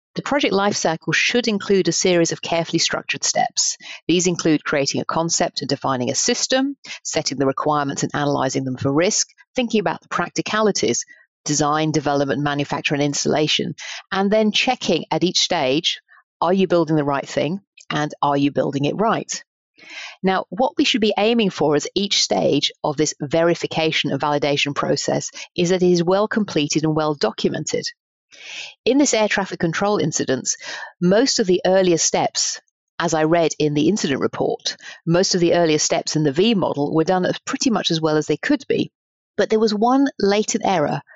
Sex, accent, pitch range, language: female, British, 150-205 Hz, English